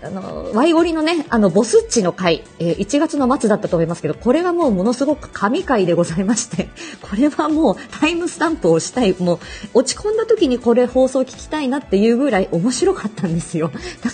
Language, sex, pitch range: Japanese, female, 180-265 Hz